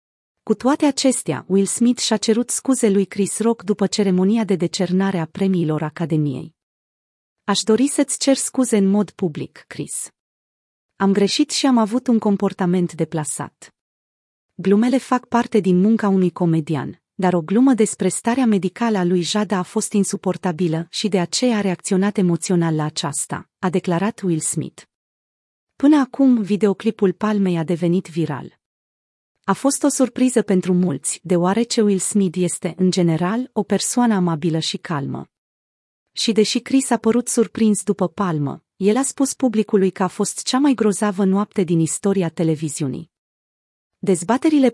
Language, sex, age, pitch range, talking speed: Romanian, female, 30-49, 175-225 Hz, 150 wpm